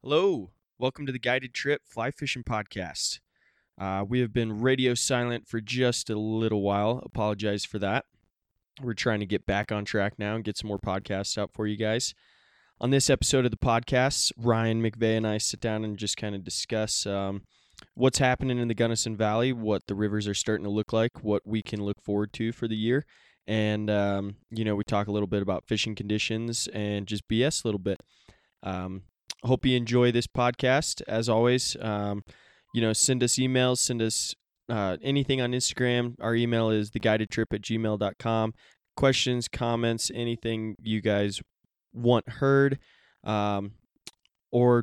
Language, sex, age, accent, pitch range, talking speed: English, male, 20-39, American, 105-120 Hz, 180 wpm